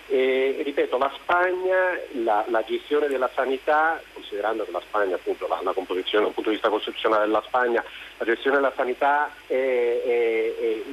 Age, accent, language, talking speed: 40-59, native, Italian, 170 wpm